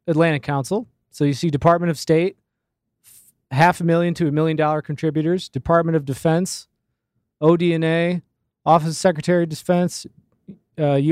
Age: 20-39